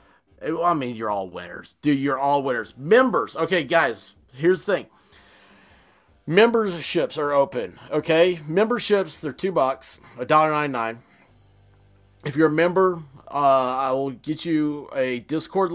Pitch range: 125-155 Hz